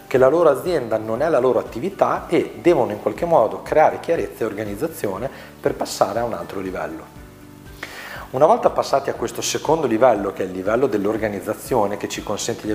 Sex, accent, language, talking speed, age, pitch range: male, native, Italian, 190 wpm, 40-59, 105-115 Hz